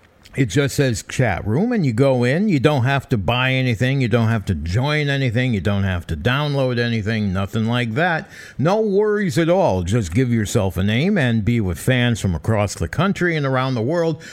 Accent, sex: American, male